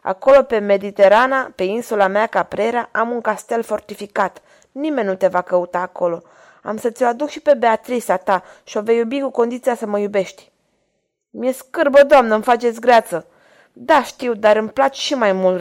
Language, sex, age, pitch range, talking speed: Romanian, female, 20-39, 195-255 Hz, 185 wpm